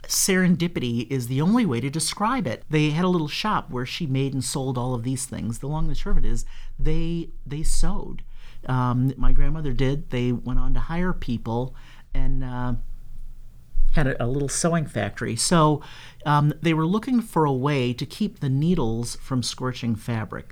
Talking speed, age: 195 wpm, 50-69